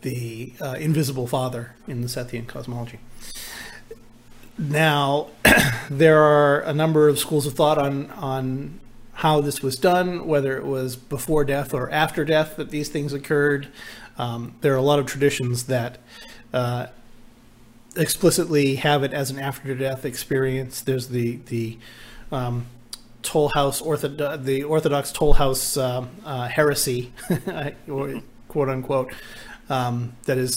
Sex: male